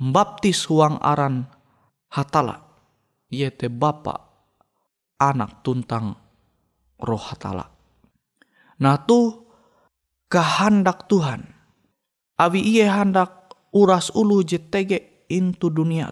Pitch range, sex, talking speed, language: 150-190 Hz, male, 80 wpm, Indonesian